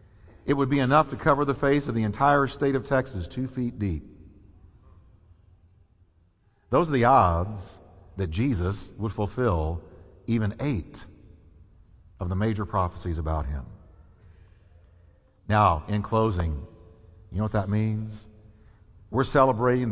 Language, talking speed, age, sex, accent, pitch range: English, 130 wpm, 50-69, male, American, 90-145 Hz